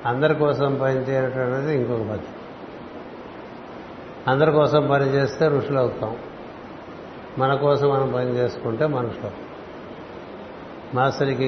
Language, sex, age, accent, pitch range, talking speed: Telugu, male, 60-79, native, 120-140 Hz, 95 wpm